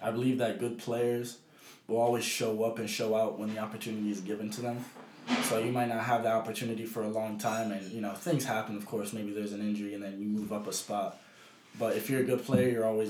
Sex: male